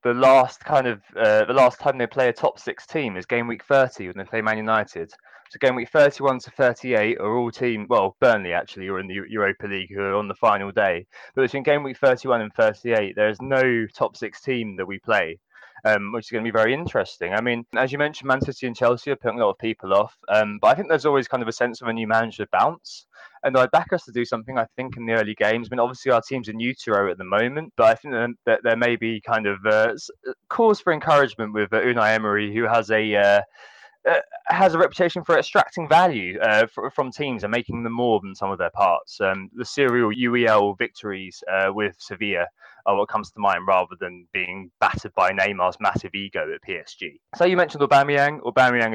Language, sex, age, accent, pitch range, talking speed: English, male, 20-39, British, 105-130 Hz, 235 wpm